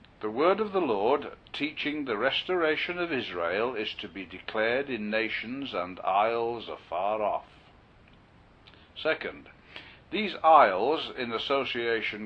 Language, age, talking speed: English, 60-79, 120 wpm